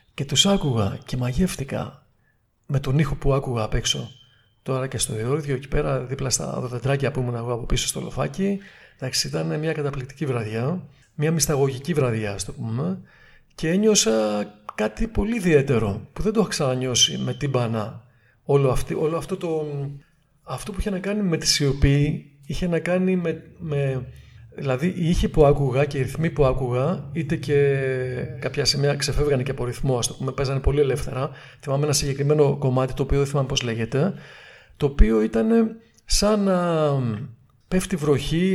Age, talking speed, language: 40-59, 160 wpm, Greek